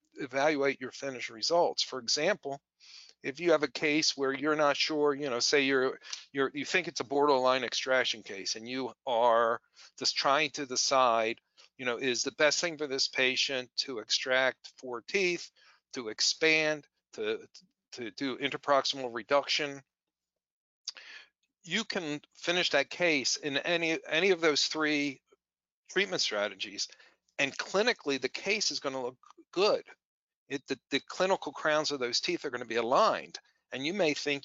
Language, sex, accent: English, male, American